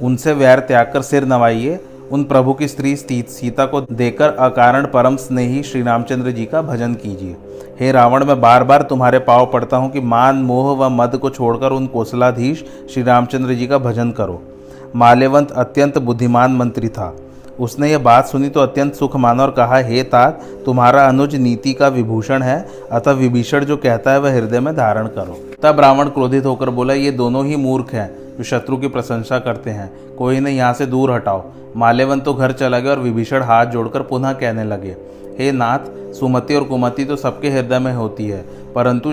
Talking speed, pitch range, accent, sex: 185 wpm, 120-135 Hz, native, male